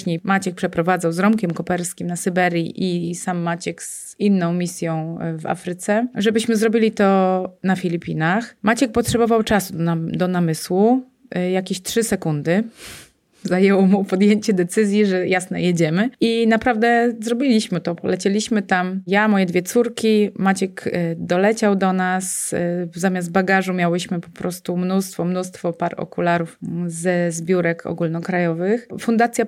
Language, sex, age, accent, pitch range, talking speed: Polish, female, 30-49, native, 175-205 Hz, 125 wpm